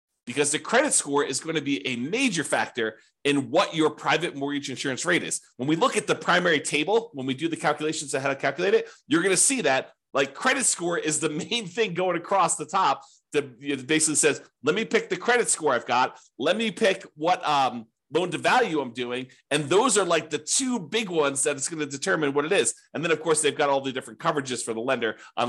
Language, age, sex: English, 40-59, male